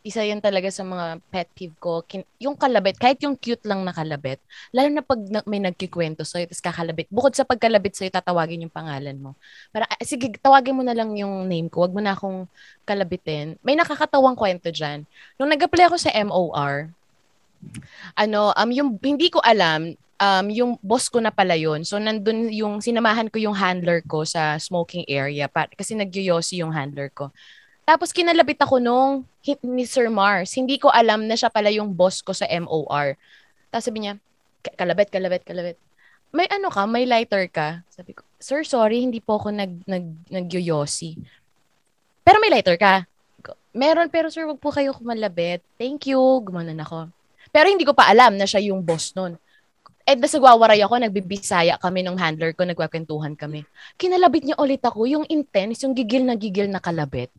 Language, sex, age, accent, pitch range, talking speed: Filipino, female, 20-39, native, 170-250 Hz, 180 wpm